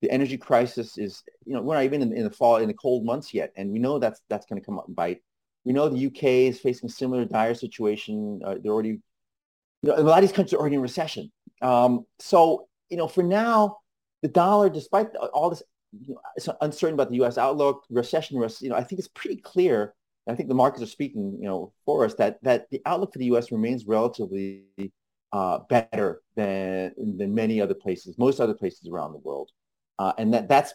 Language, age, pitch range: English, 30-49, 115-165 Hz